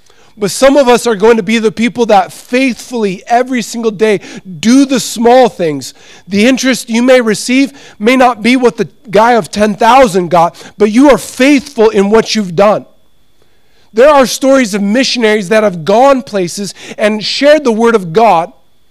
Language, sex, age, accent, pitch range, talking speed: English, male, 40-59, American, 155-225 Hz, 180 wpm